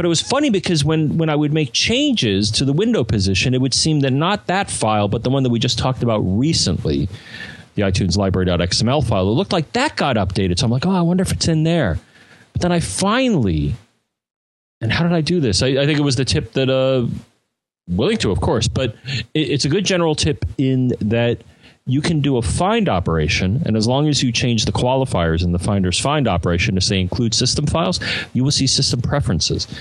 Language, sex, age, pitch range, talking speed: English, male, 40-59, 110-160 Hz, 225 wpm